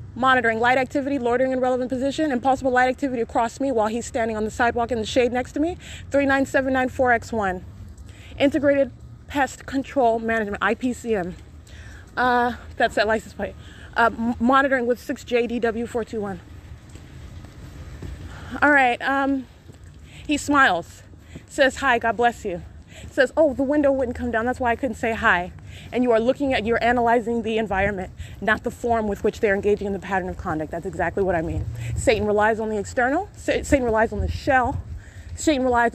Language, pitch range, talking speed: English, 200-265 Hz, 190 wpm